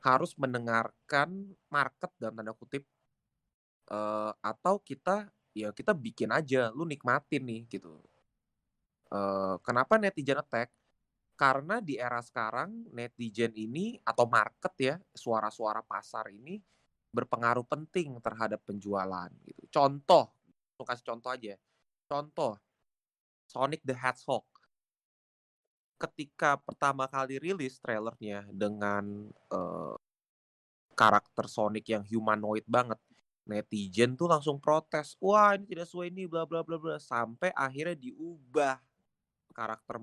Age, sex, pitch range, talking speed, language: 20-39, male, 110-155 Hz, 115 wpm, Indonesian